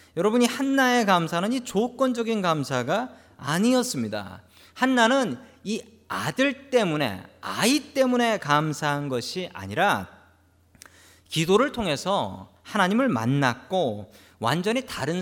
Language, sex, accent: Korean, male, native